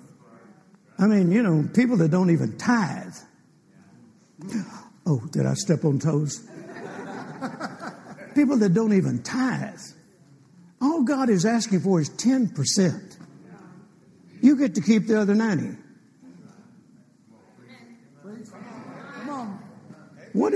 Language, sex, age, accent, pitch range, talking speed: English, male, 60-79, American, 175-220 Hz, 100 wpm